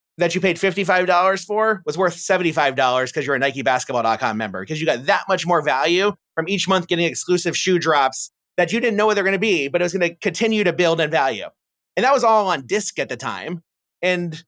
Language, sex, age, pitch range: English, male, 30-49, 155-190 Hz